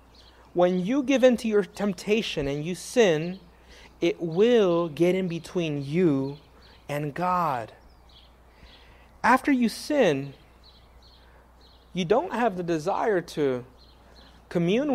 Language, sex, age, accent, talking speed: English, male, 30-49, American, 110 wpm